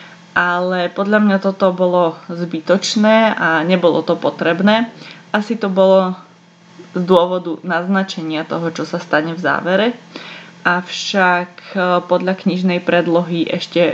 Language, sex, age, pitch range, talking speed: Slovak, female, 20-39, 165-190 Hz, 115 wpm